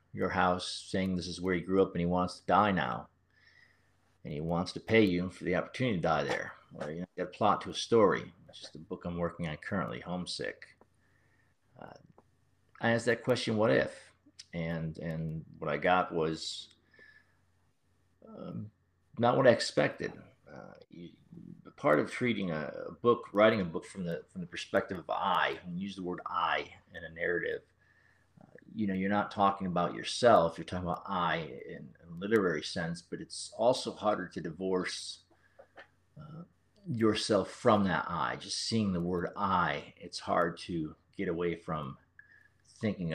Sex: male